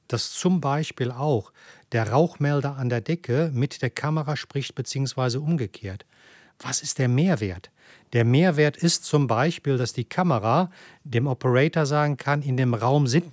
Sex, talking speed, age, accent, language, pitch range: male, 160 wpm, 40-59, German, German, 125-155 Hz